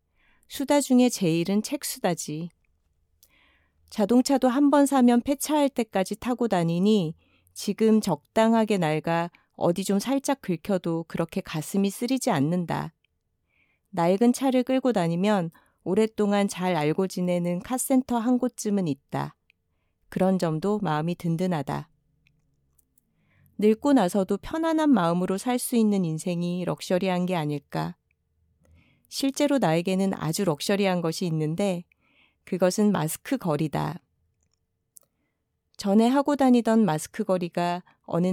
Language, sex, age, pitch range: Korean, female, 40-59, 165-225 Hz